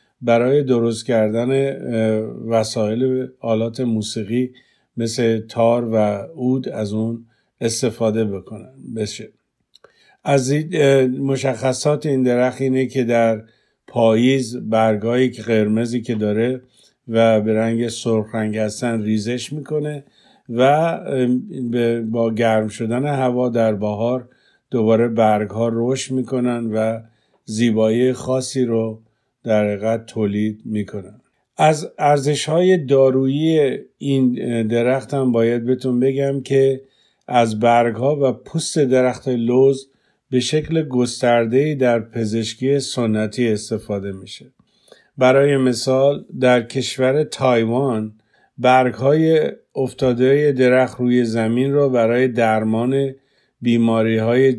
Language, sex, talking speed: Persian, male, 110 wpm